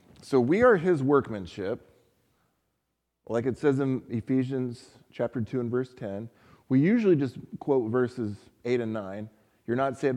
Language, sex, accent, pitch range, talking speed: English, male, American, 115-140 Hz, 155 wpm